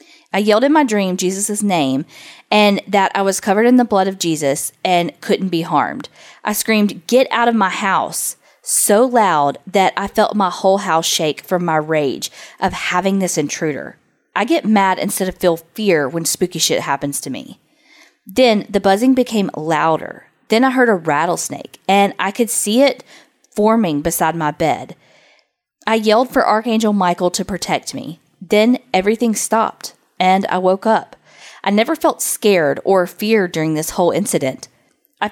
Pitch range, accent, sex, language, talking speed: 170-220 Hz, American, female, English, 175 wpm